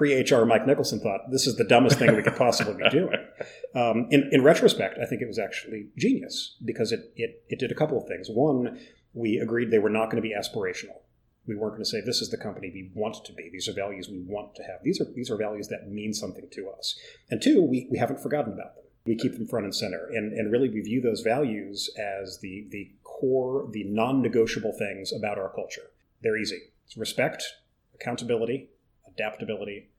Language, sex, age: English, male, 30-49